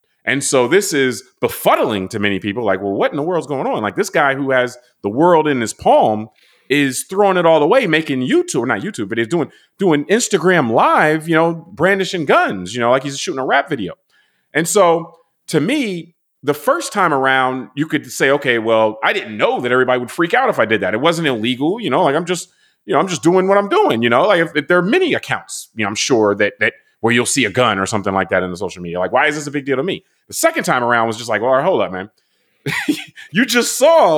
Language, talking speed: English, 255 wpm